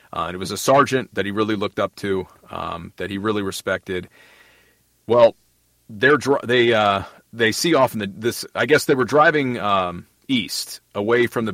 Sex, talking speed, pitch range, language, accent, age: male, 200 wpm, 95-120 Hz, English, American, 40-59